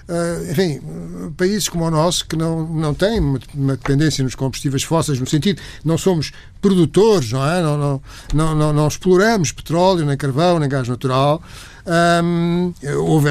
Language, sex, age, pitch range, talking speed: Portuguese, male, 60-79, 150-205 Hz, 155 wpm